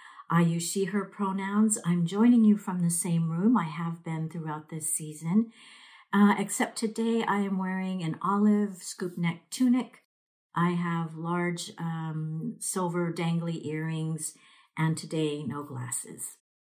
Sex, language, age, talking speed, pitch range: female, English, 50-69, 145 wpm, 155-190 Hz